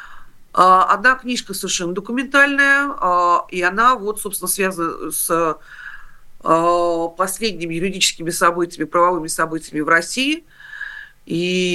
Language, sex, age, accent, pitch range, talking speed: Russian, female, 40-59, native, 165-245 Hz, 85 wpm